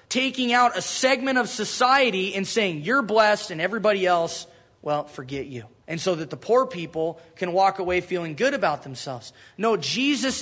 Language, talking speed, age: English, 180 wpm, 20-39